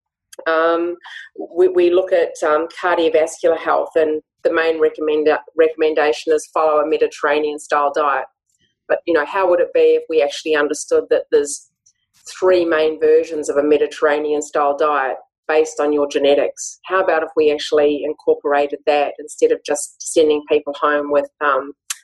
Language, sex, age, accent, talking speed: English, female, 30-49, Australian, 160 wpm